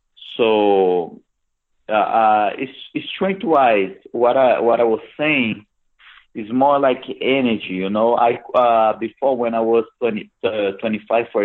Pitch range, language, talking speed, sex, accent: 105-130 Hz, English, 140 wpm, male, Brazilian